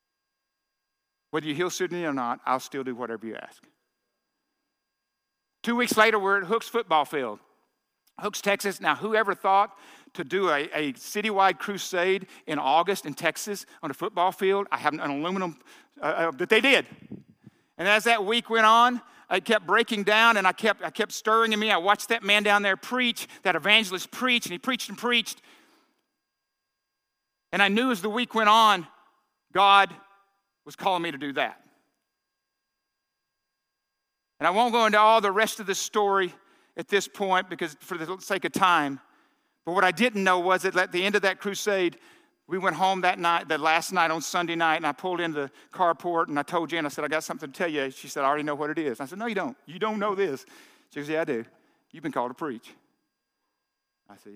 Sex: male